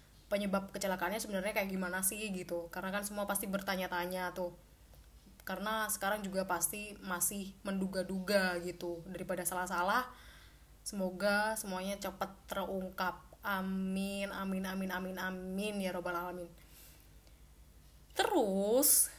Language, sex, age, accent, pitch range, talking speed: Indonesian, female, 20-39, native, 185-215 Hz, 110 wpm